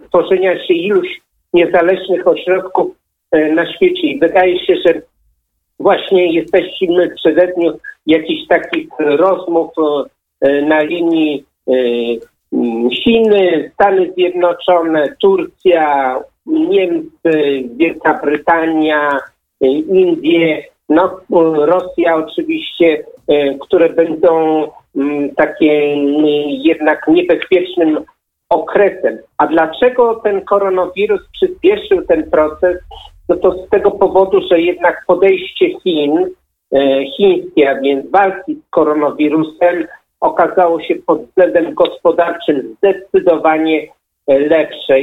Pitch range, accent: 155-205 Hz, native